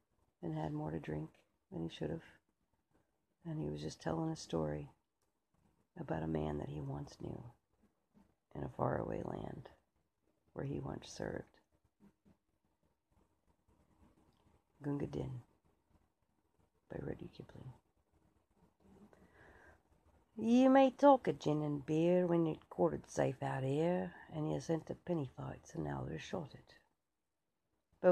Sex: female